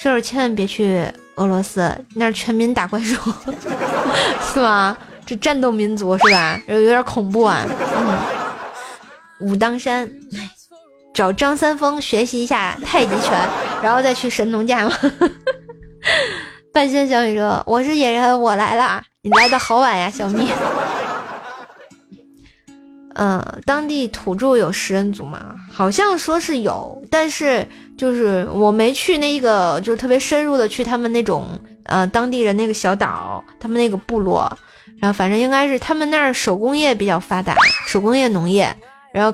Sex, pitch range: female, 205-265 Hz